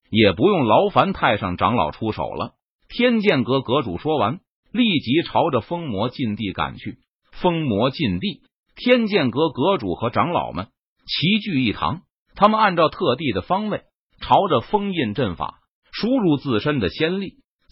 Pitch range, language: 125-200 Hz, Chinese